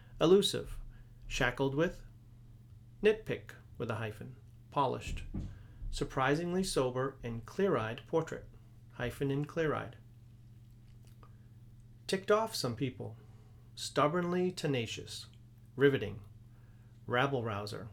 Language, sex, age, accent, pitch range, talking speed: English, male, 40-59, American, 115-135 Hz, 80 wpm